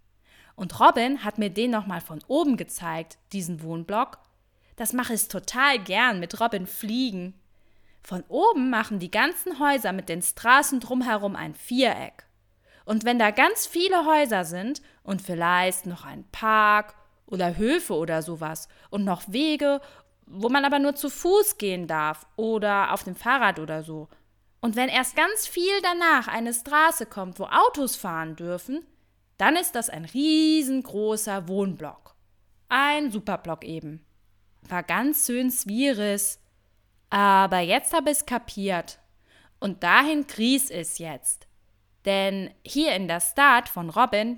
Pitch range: 175-265 Hz